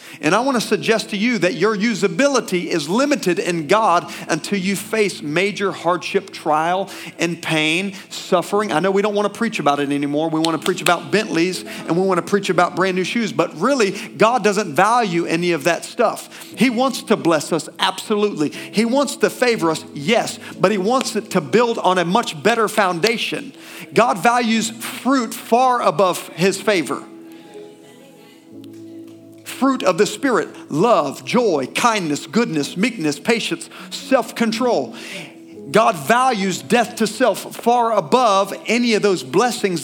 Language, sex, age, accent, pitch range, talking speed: English, male, 40-59, American, 175-230 Hz, 165 wpm